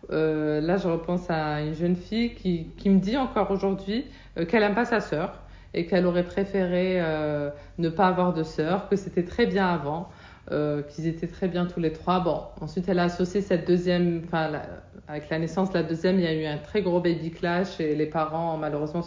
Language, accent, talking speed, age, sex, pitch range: French, French, 215 wpm, 50-69, female, 160-195 Hz